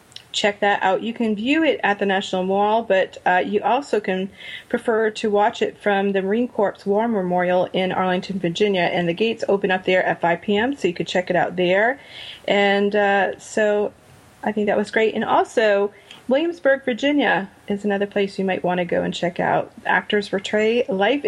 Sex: female